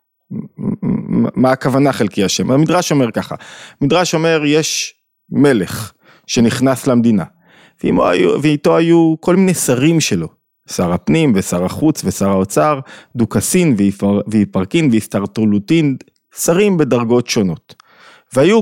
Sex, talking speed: male, 105 wpm